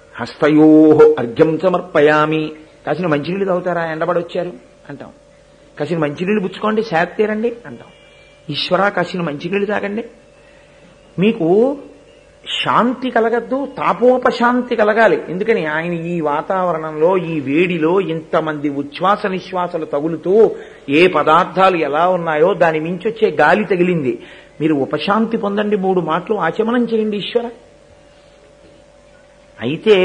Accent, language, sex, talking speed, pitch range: native, Telugu, male, 105 wpm, 160-235 Hz